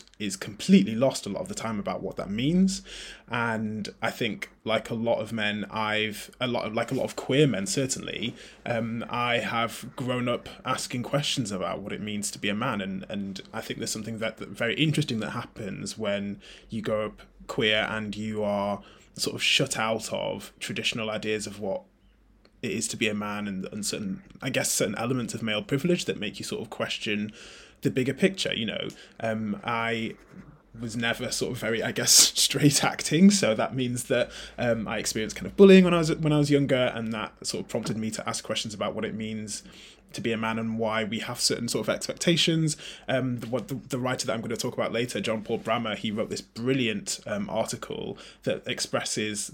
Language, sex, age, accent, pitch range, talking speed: English, male, 20-39, British, 110-140 Hz, 215 wpm